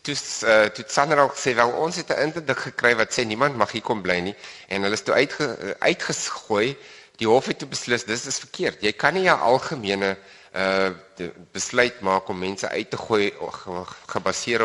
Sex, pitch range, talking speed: male, 95-120 Hz, 190 wpm